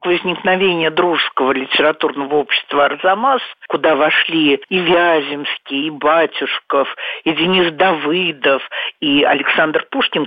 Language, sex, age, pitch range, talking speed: Russian, male, 50-69, 150-215 Hz, 100 wpm